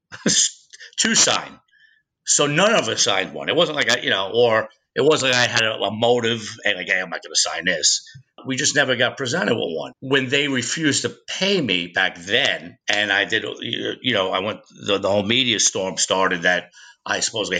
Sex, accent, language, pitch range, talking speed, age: male, American, English, 115-140 Hz, 210 wpm, 50-69